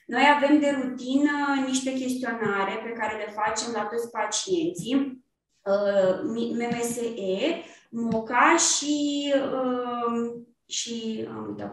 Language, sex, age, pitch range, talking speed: Romanian, female, 20-39, 215-280 Hz, 100 wpm